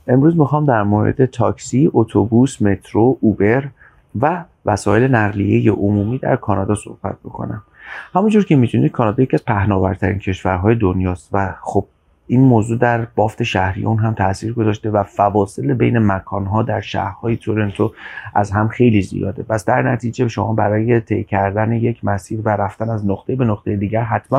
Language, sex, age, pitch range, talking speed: Persian, male, 30-49, 100-120 Hz, 155 wpm